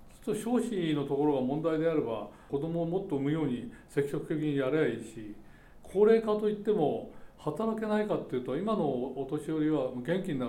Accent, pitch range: native, 140-180 Hz